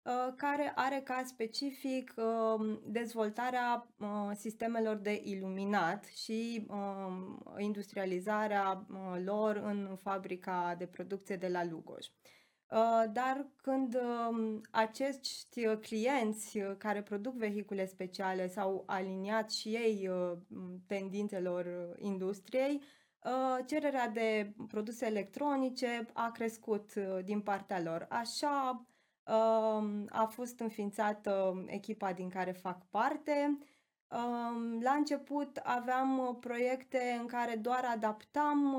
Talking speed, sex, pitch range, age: 90 wpm, female, 200-250 Hz, 20-39